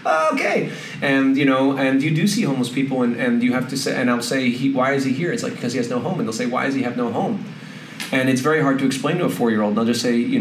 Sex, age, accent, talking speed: male, 30-49, American, 325 wpm